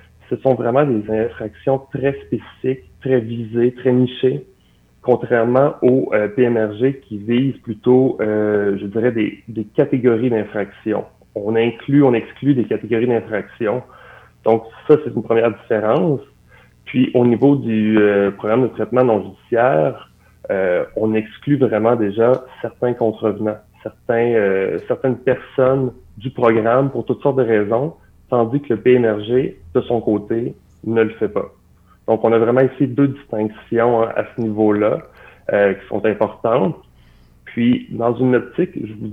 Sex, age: male, 30-49